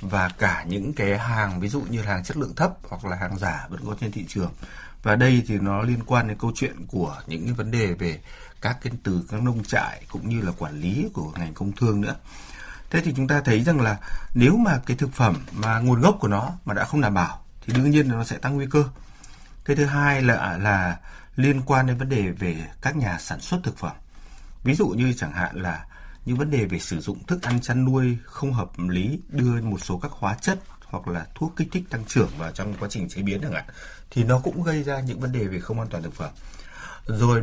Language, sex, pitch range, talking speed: Vietnamese, male, 95-130 Hz, 250 wpm